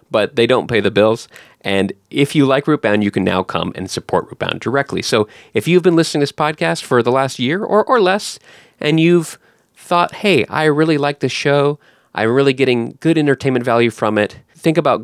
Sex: male